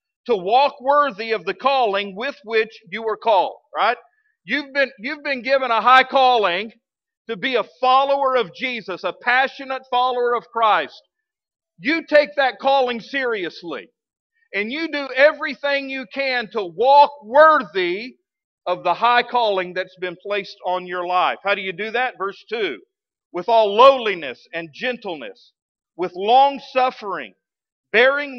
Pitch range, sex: 215-280 Hz, male